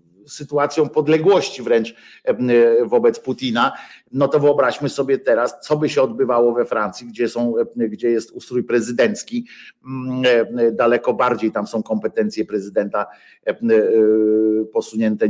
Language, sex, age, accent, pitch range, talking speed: Polish, male, 50-69, native, 115-150 Hz, 115 wpm